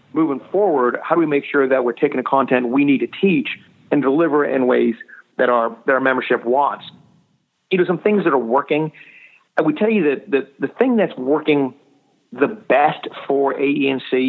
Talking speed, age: 195 wpm, 50-69